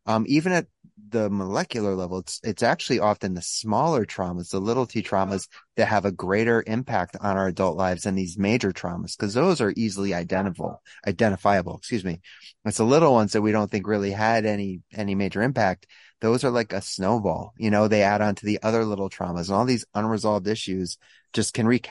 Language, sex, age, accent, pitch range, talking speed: English, male, 30-49, American, 100-120 Hz, 205 wpm